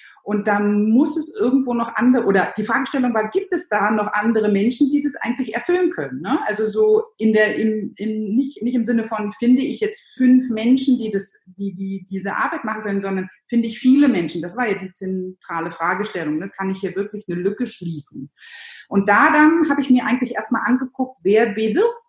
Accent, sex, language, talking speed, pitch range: German, female, German, 210 wpm, 185-255 Hz